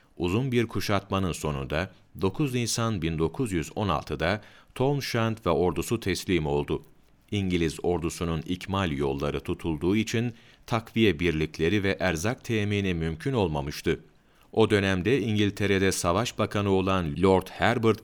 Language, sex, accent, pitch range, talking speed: Turkish, male, native, 85-110 Hz, 115 wpm